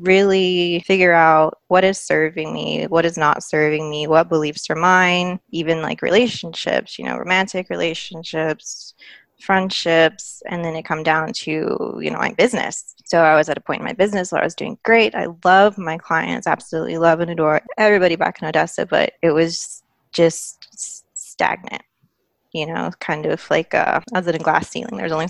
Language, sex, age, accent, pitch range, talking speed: English, female, 20-39, American, 155-185 Hz, 185 wpm